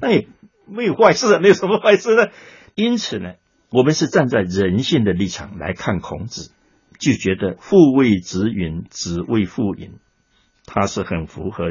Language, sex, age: Chinese, male, 60-79